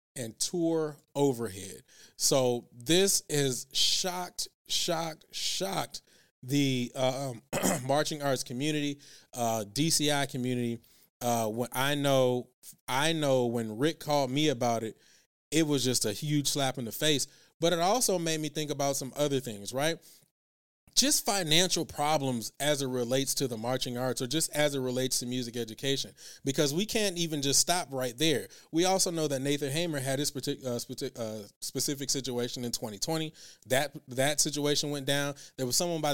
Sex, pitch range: male, 125-155 Hz